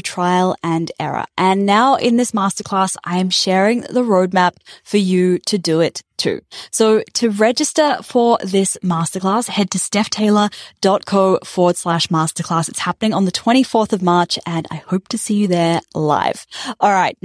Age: 10-29